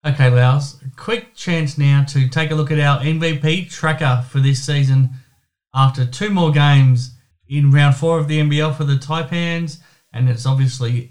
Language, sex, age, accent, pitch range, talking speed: English, male, 20-39, Australian, 130-160 Hz, 175 wpm